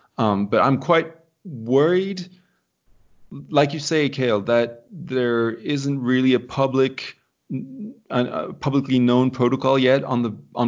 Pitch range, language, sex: 105-125 Hz, English, male